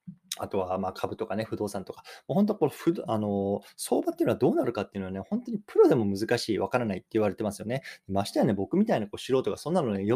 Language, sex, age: Japanese, male, 20-39